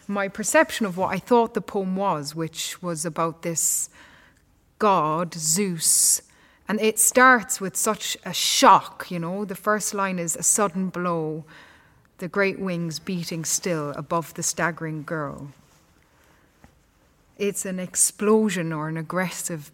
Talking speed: 140 wpm